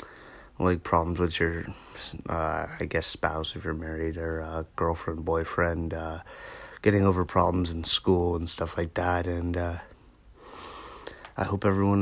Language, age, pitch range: English, 30-49, 90-105 Hz